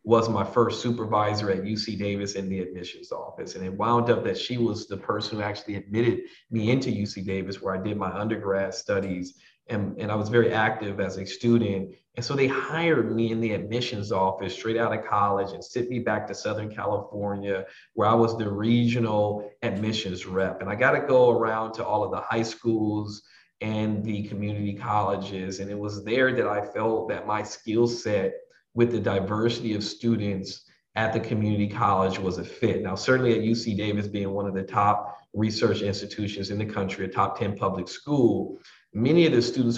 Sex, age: male, 40-59